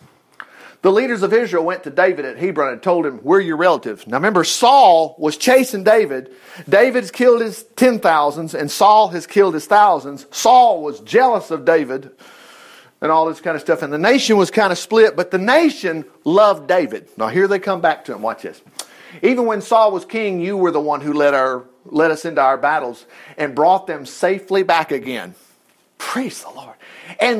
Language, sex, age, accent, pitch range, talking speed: English, male, 50-69, American, 155-205 Hz, 200 wpm